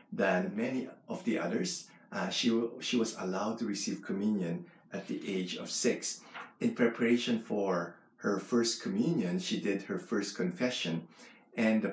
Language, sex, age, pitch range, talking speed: English, male, 50-69, 100-125 Hz, 160 wpm